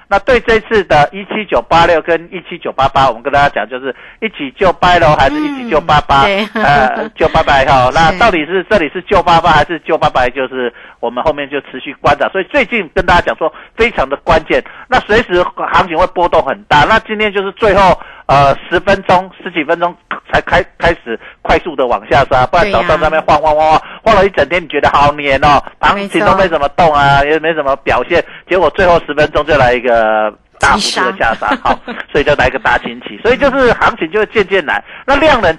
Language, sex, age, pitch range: Chinese, male, 50-69, 140-200 Hz